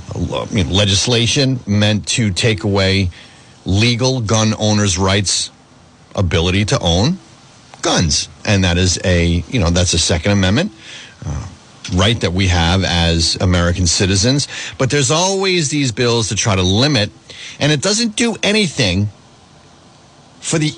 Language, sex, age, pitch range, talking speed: English, male, 40-59, 90-130 Hz, 140 wpm